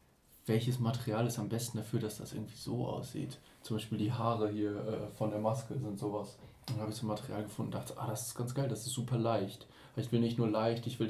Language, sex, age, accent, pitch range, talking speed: German, male, 20-39, German, 110-130 Hz, 255 wpm